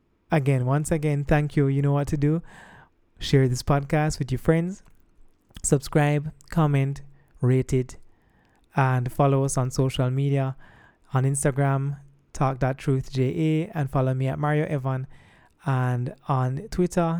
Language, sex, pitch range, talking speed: English, male, 125-145 Hz, 135 wpm